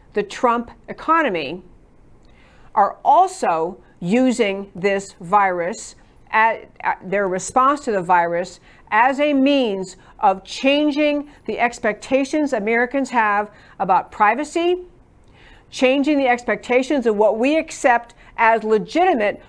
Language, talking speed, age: English, 110 wpm, 50-69